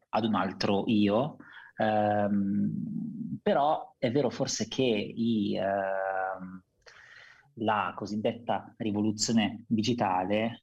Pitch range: 100-125 Hz